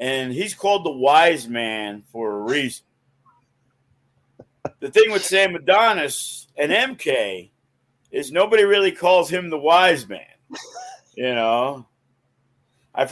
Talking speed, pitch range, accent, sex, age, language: 125 wpm, 125-180 Hz, American, male, 50-69, English